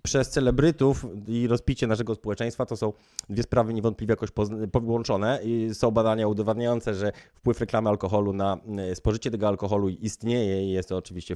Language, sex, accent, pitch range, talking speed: Polish, male, native, 100-115 Hz, 160 wpm